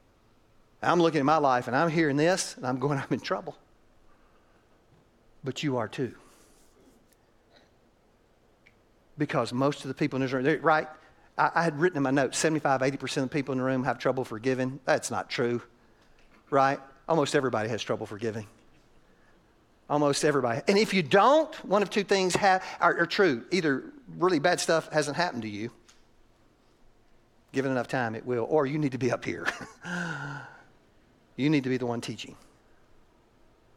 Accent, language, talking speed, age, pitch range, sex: American, English, 170 wpm, 50-69, 115-155 Hz, male